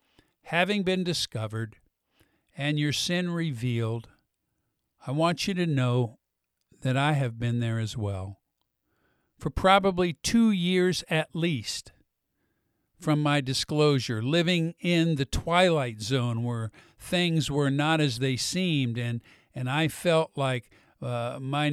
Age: 50-69